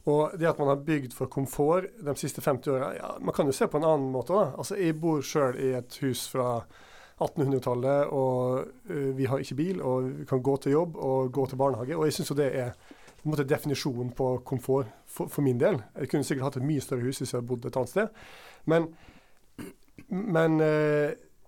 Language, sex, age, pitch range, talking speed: English, male, 30-49, 125-150 Hz, 210 wpm